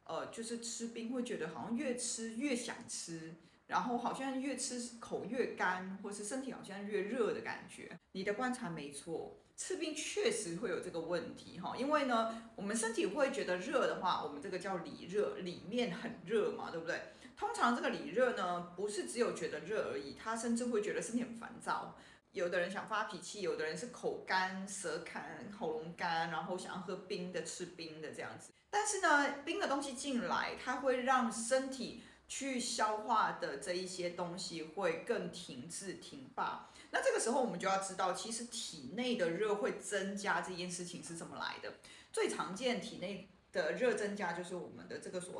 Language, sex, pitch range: Chinese, female, 185-260 Hz